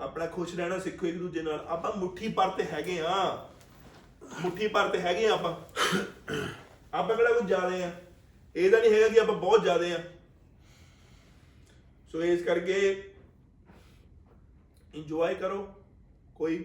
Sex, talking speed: male, 135 wpm